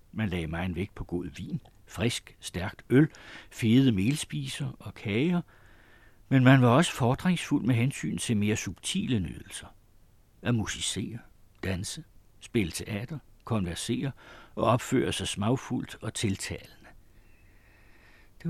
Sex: male